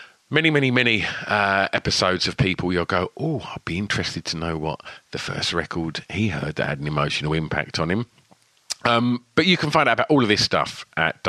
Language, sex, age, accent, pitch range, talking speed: English, male, 40-59, British, 85-145 Hz, 215 wpm